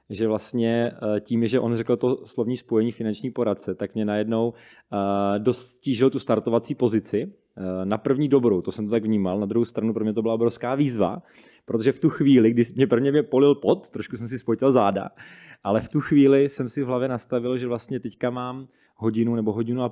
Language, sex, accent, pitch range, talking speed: Czech, male, native, 105-120 Hz, 200 wpm